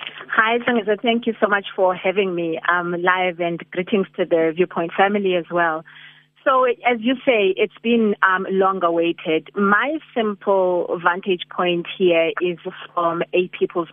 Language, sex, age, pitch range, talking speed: English, female, 30-49, 170-200 Hz, 155 wpm